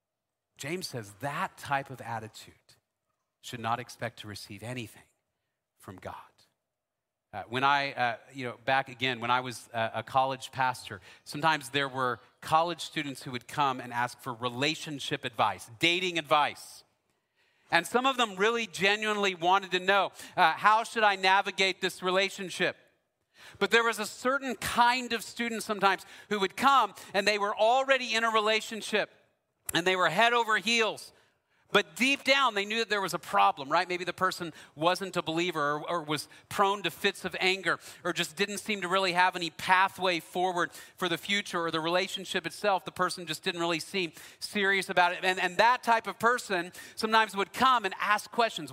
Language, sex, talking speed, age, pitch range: English, male, 180 wpm, 40-59, 140-200 Hz